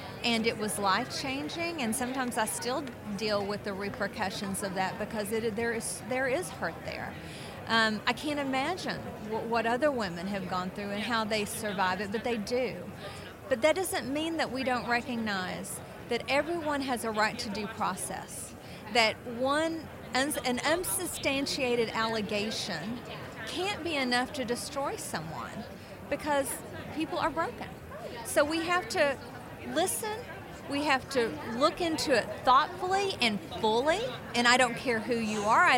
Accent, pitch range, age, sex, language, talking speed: American, 220-295 Hz, 40-59, female, English, 160 wpm